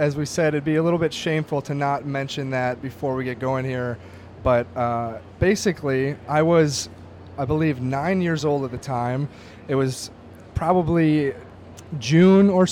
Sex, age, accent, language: male, 30-49, American, English